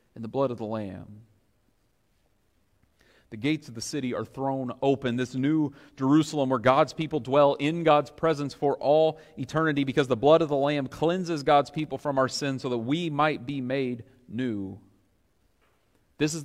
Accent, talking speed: American, 175 wpm